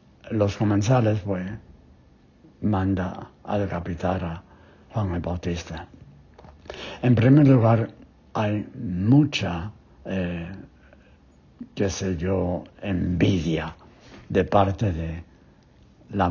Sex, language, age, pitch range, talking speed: male, English, 60-79, 90-105 Hz, 90 wpm